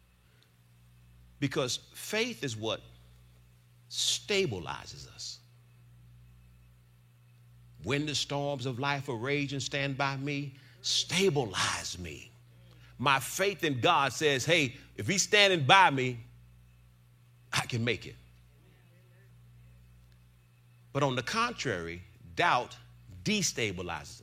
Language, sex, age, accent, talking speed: English, male, 40-59, American, 95 wpm